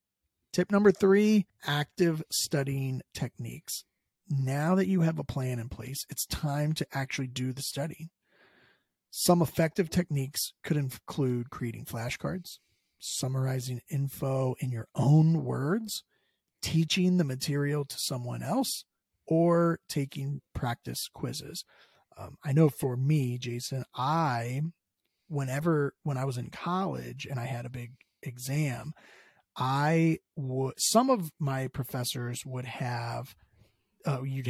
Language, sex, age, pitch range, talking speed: English, male, 40-59, 125-160 Hz, 125 wpm